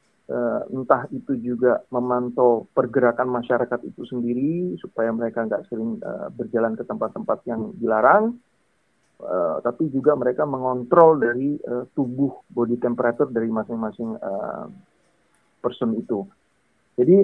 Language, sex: English, male